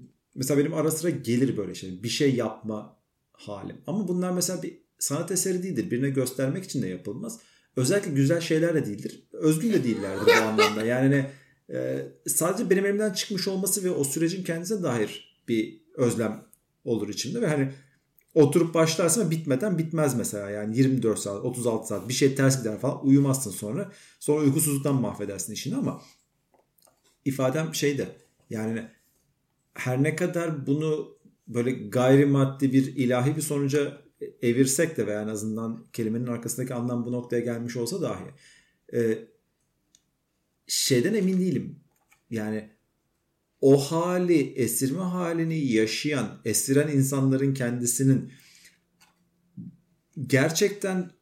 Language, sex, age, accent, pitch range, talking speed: Turkish, male, 50-69, native, 120-170 Hz, 130 wpm